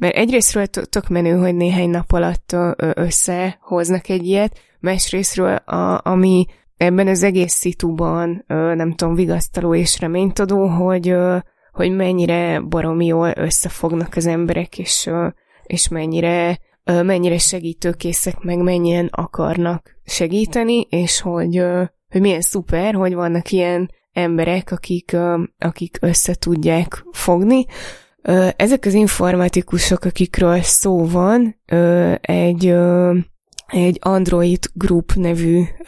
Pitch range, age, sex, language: 170-185 Hz, 20-39, female, Hungarian